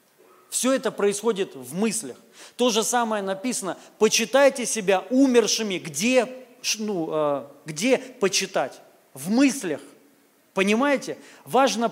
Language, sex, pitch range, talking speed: Russian, male, 175-235 Hz, 100 wpm